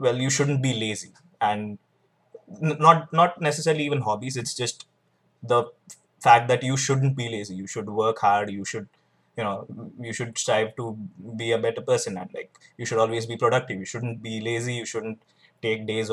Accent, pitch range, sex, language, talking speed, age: native, 110-135 Hz, male, Hindi, 195 wpm, 20-39